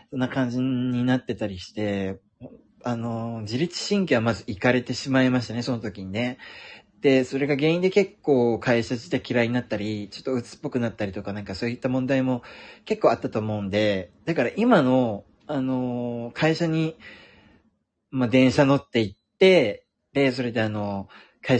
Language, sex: Japanese, male